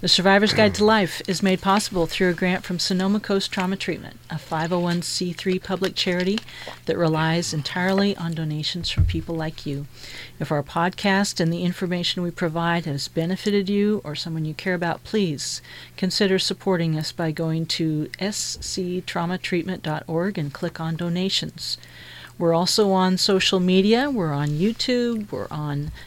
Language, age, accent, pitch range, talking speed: English, 40-59, American, 160-190 Hz, 155 wpm